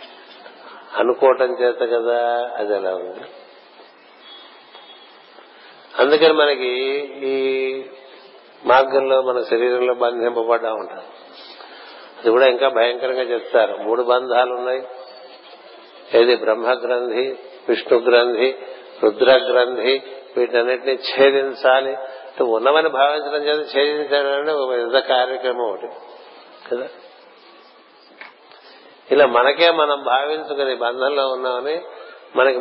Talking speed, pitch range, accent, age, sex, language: 85 wpm, 125-150 Hz, native, 50-69, male, Telugu